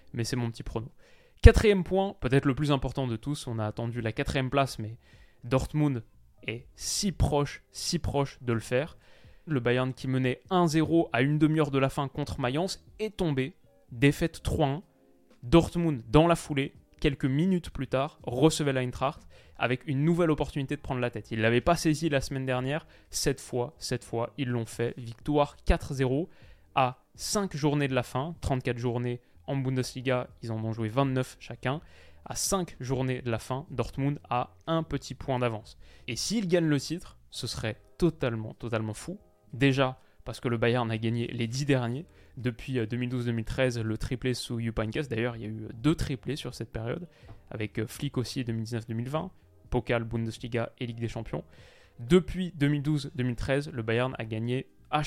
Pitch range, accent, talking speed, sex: 115-145 Hz, French, 175 wpm, male